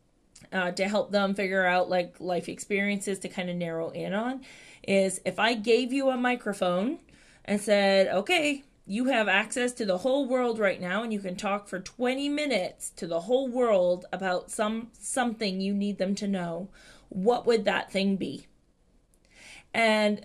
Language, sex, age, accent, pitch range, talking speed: English, female, 20-39, American, 190-235 Hz, 175 wpm